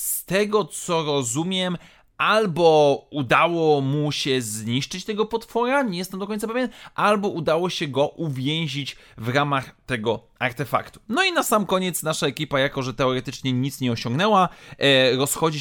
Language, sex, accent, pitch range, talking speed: Polish, male, native, 125-185 Hz, 150 wpm